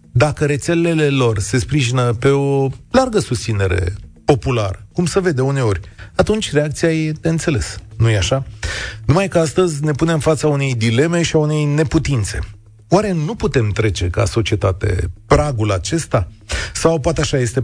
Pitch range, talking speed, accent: 105-145 Hz, 155 wpm, native